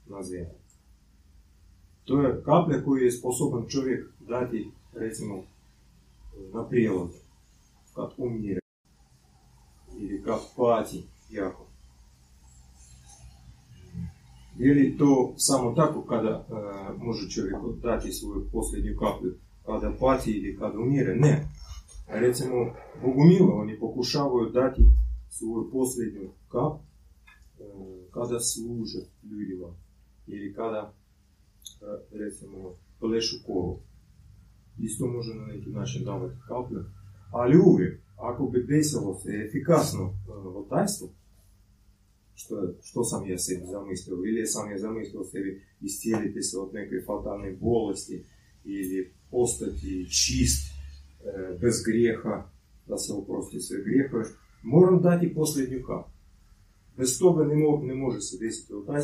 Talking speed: 100 wpm